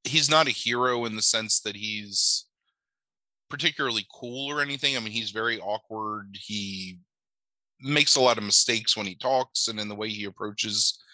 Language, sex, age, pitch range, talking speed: English, male, 20-39, 100-120 Hz, 180 wpm